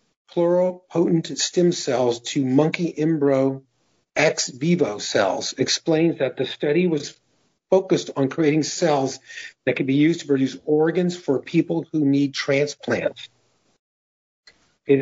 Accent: American